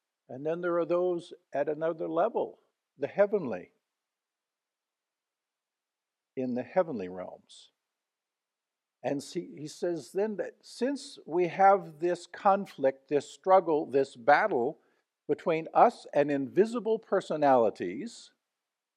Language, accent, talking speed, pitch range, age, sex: English, American, 110 wpm, 150-225 Hz, 50-69, male